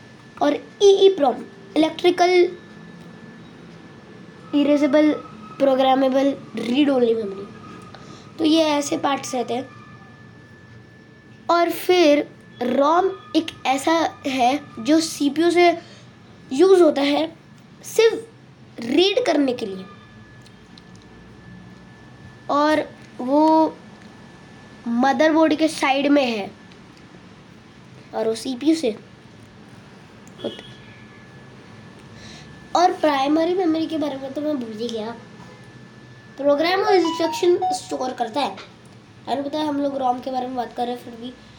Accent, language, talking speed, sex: native, Hindi, 105 wpm, female